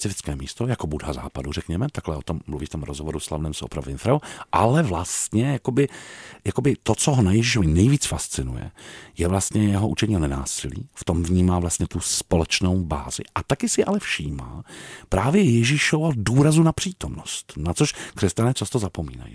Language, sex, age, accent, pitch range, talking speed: Czech, male, 40-59, native, 80-115 Hz, 170 wpm